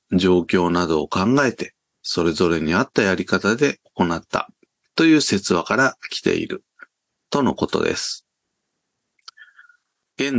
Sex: male